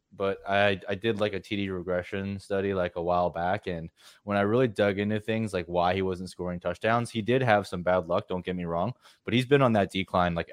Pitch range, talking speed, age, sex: 90-110 Hz, 245 wpm, 20-39, male